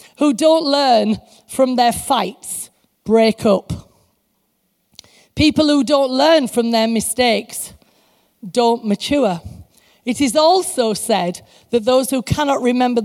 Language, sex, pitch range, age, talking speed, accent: English, female, 210-270 Hz, 40-59, 120 wpm, British